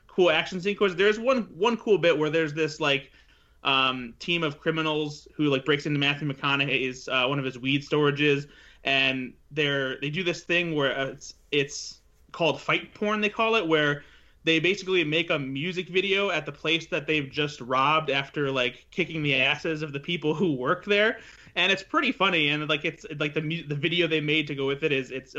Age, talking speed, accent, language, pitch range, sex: 20-39, 210 wpm, American, English, 140-170 Hz, male